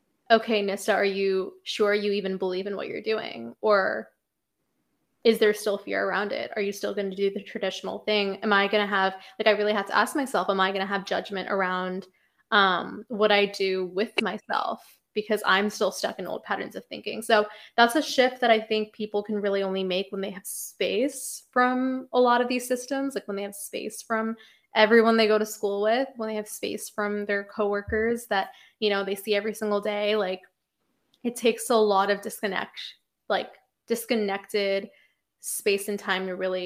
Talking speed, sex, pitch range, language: 205 wpm, female, 200-220 Hz, English